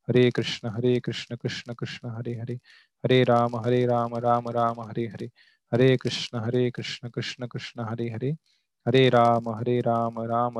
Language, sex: Marathi, male